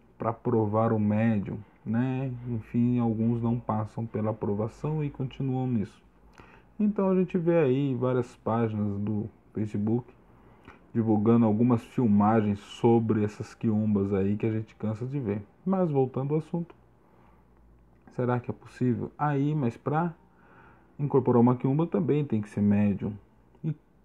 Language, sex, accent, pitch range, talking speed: Portuguese, male, Brazilian, 105-135 Hz, 140 wpm